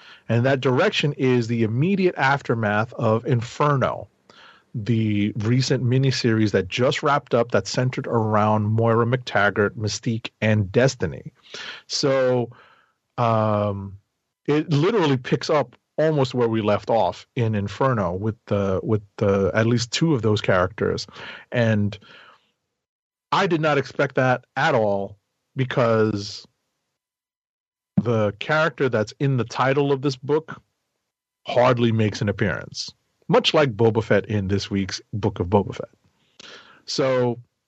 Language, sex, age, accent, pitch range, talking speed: English, male, 40-59, American, 105-135 Hz, 130 wpm